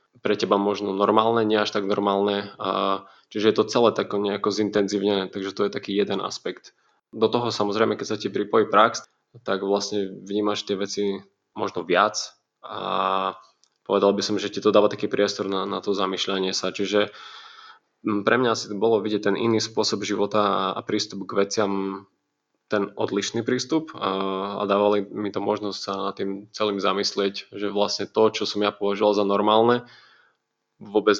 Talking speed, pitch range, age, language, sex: 165 wpm, 100-105 Hz, 20-39, Slovak, male